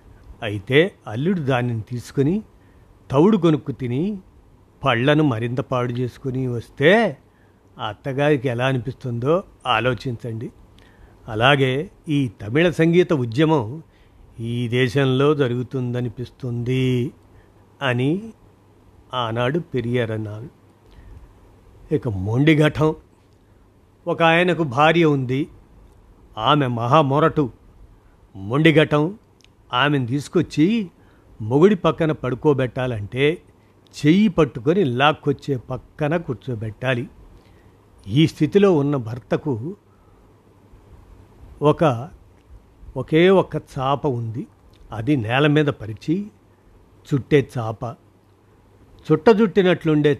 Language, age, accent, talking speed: Telugu, 50-69, native, 75 wpm